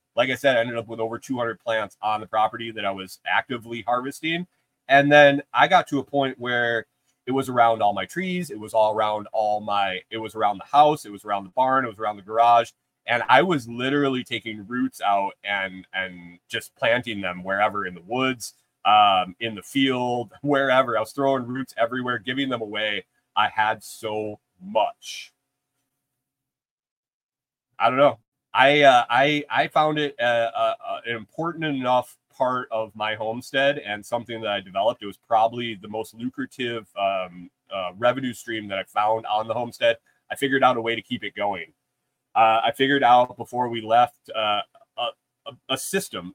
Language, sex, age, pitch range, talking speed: English, male, 30-49, 105-135 Hz, 190 wpm